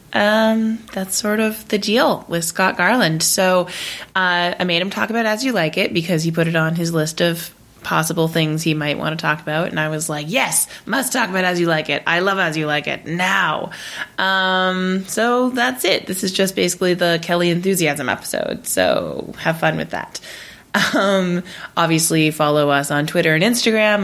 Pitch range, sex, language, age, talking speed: 155-195 Hz, female, English, 20-39, 200 wpm